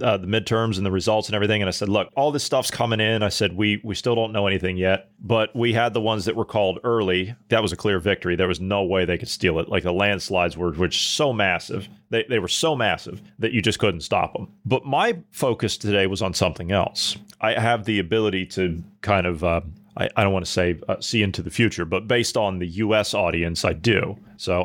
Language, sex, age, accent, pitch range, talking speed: English, male, 30-49, American, 95-150 Hz, 250 wpm